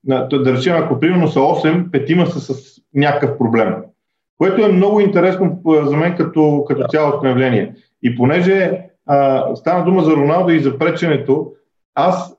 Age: 40-59